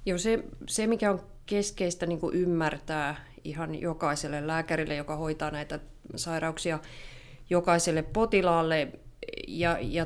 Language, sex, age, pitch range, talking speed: English, female, 30-49, 150-170 Hz, 105 wpm